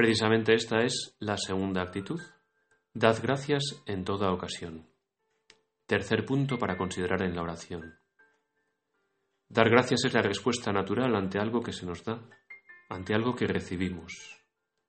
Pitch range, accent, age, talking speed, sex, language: 90-115 Hz, Spanish, 30-49, 135 wpm, male, Spanish